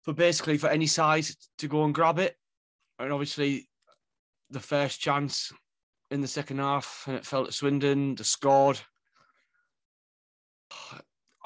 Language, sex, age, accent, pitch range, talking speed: English, male, 20-39, British, 135-155 Hz, 135 wpm